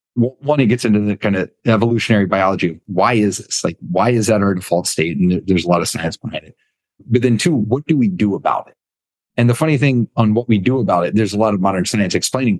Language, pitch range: English, 105-135 Hz